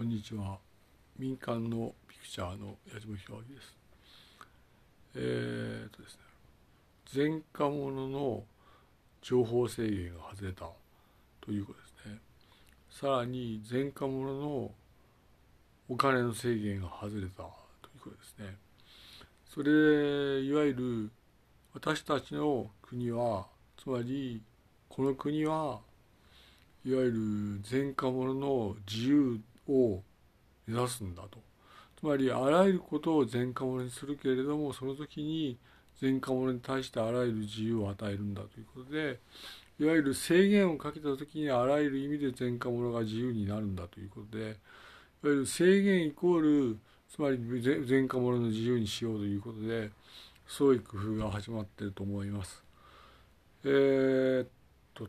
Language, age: Japanese, 60-79